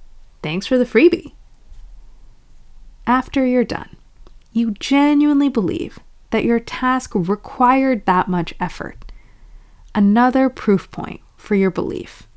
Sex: female